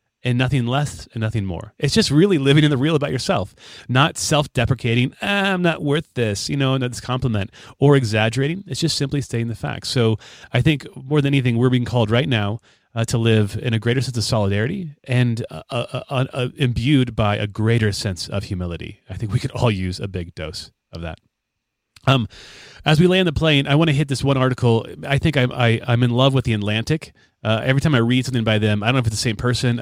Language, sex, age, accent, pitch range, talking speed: English, male, 30-49, American, 115-150 Hz, 235 wpm